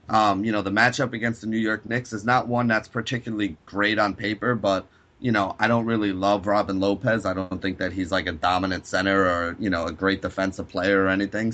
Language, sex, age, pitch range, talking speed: English, male, 30-49, 100-115 Hz, 235 wpm